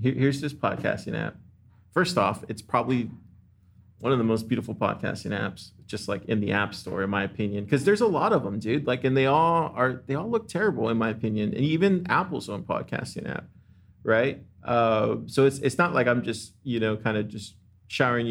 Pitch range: 105-140 Hz